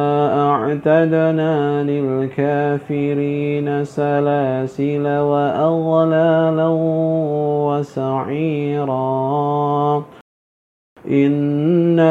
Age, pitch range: 40-59, 145-160 Hz